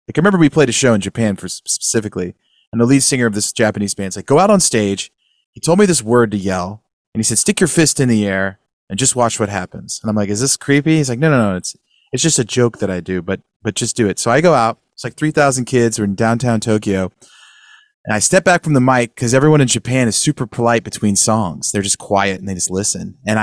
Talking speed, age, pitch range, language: 270 wpm, 30-49, 105-145 Hz, English